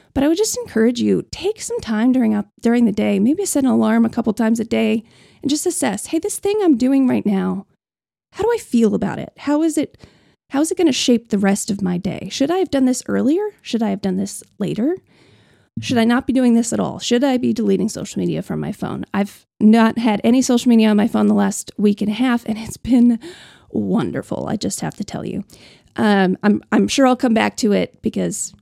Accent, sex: American, female